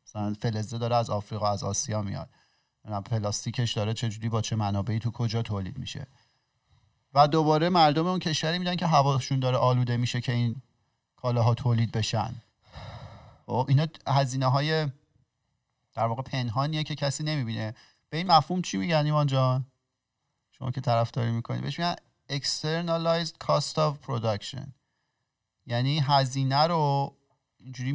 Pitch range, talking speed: 115-140 Hz, 140 wpm